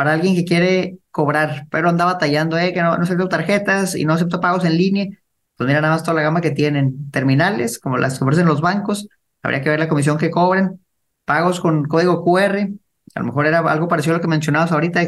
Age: 30-49